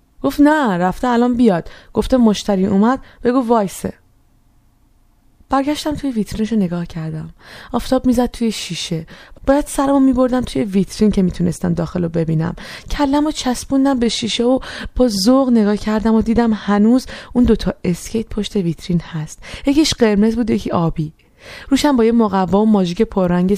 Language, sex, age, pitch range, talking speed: Persian, female, 20-39, 195-255 Hz, 150 wpm